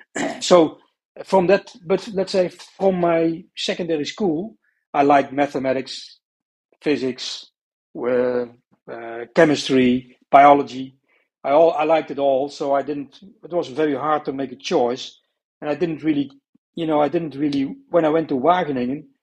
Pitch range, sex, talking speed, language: 135-155 Hz, male, 155 wpm, English